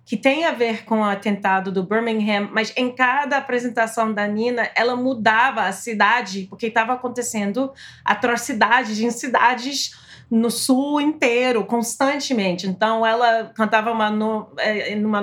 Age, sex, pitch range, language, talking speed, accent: 30-49, female, 205-255 Hz, Portuguese, 140 wpm, Brazilian